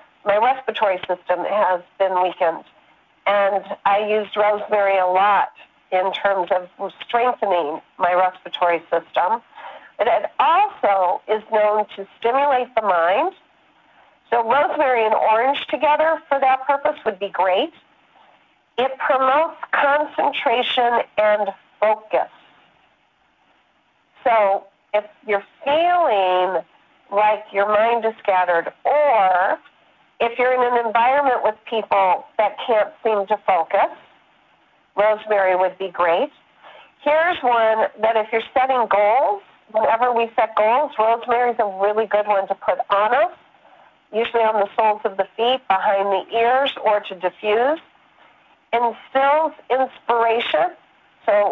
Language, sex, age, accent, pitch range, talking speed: English, female, 50-69, American, 200-245 Hz, 125 wpm